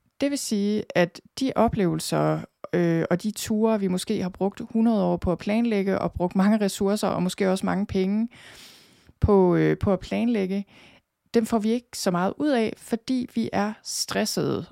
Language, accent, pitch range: Danish, native, 175-215 Hz